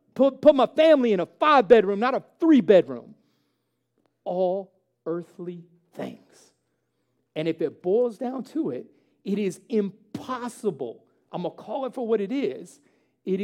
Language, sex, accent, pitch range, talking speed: English, male, American, 155-205 Hz, 145 wpm